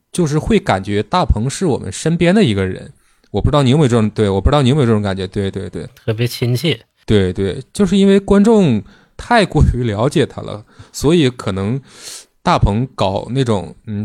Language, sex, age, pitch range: Chinese, male, 20-39, 105-140 Hz